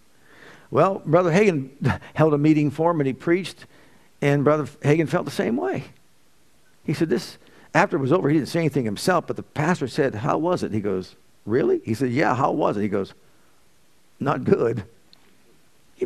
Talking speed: 190 wpm